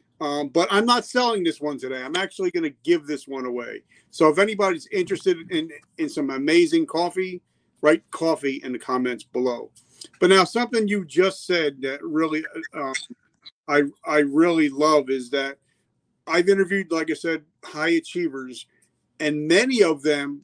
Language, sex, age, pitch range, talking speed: English, male, 40-59, 145-190 Hz, 165 wpm